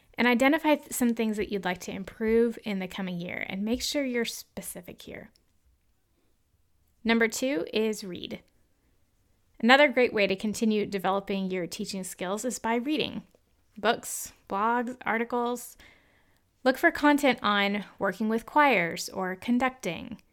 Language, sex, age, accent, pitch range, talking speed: English, female, 20-39, American, 195-250 Hz, 140 wpm